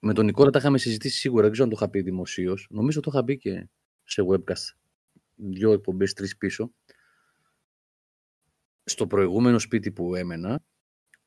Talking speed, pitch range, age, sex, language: 160 wpm, 100-130 Hz, 30-49, male, Greek